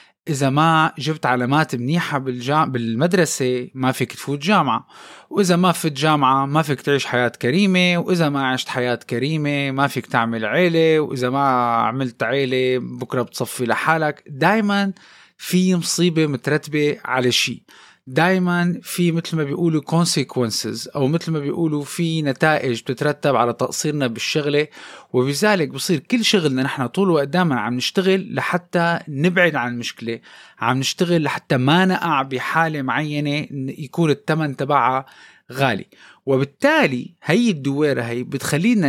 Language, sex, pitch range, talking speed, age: Arabic, male, 130-170 Hz, 135 wpm, 20-39